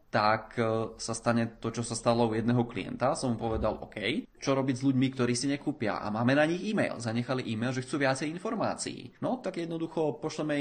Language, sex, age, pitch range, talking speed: Czech, male, 20-39, 115-140 Hz, 205 wpm